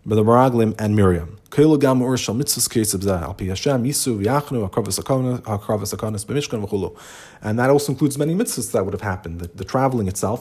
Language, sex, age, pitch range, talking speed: English, male, 30-49, 110-150 Hz, 90 wpm